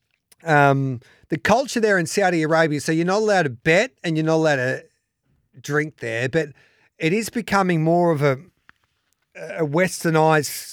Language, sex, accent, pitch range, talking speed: English, male, Australian, 125-155 Hz, 160 wpm